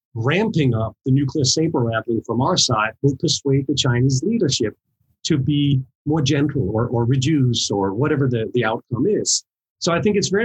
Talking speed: 185 wpm